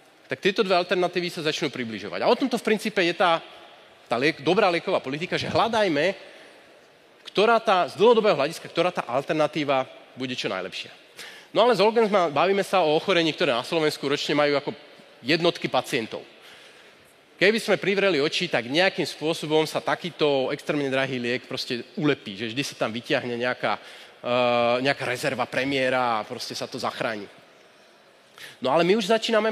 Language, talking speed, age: Slovak, 165 wpm, 30-49